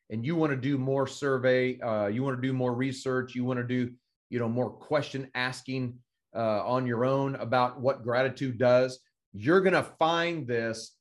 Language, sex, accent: English, male, American